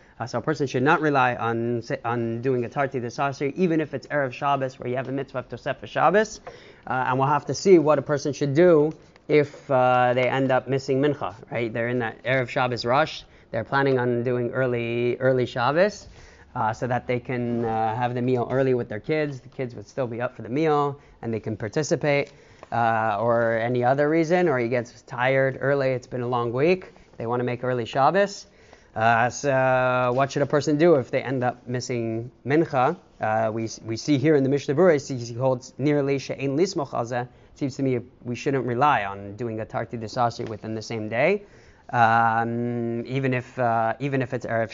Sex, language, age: male, English, 30-49